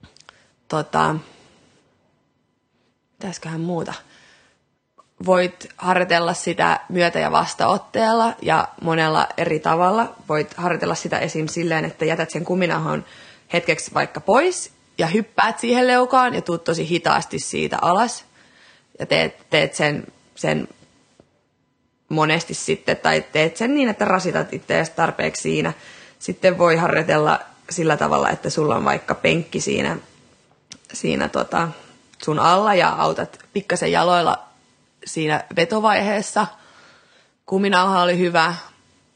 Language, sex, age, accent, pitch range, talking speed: Finnish, female, 20-39, native, 165-205 Hz, 115 wpm